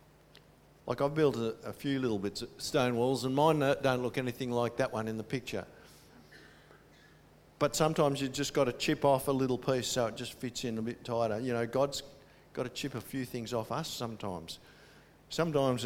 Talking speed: 210 wpm